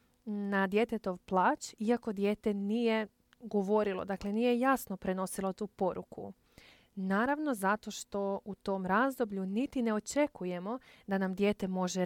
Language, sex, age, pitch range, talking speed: Croatian, female, 20-39, 185-225 Hz, 130 wpm